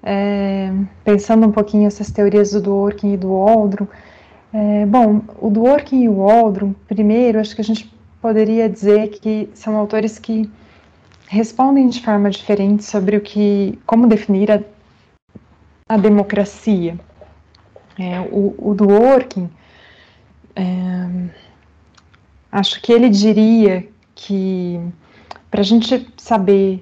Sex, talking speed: female, 125 wpm